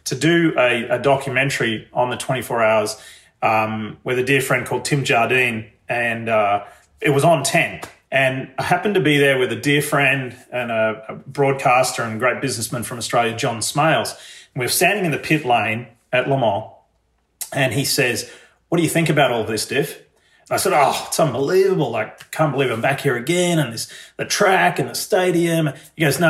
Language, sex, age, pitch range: English, male, 30-49, 120-150 Hz